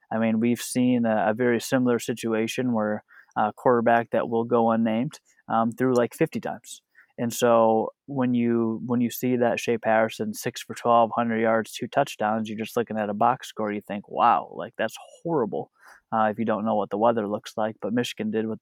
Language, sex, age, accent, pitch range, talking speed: English, male, 20-39, American, 110-120 Hz, 205 wpm